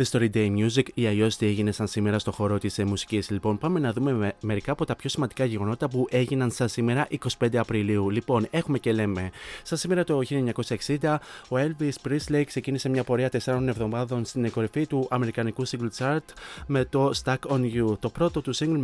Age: 30-49